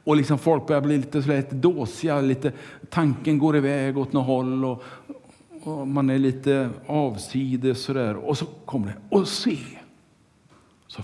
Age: 50-69